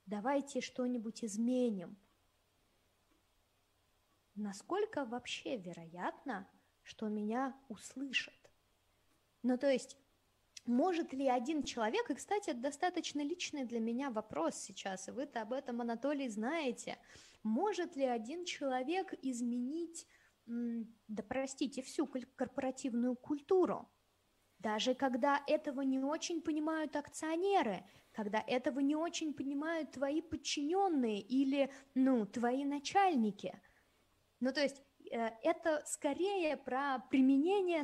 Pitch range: 230-295 Hz